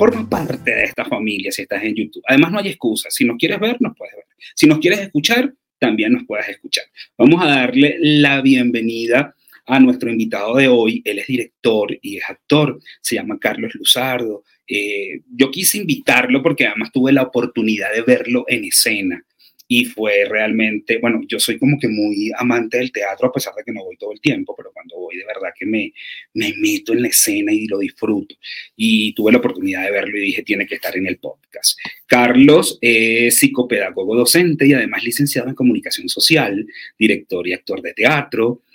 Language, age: Spanish, 30-49